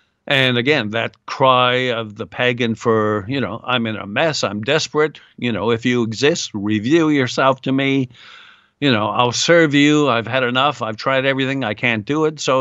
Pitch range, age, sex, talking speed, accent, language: 110-130 Hz, 50-69, male, 195 wpm, American, English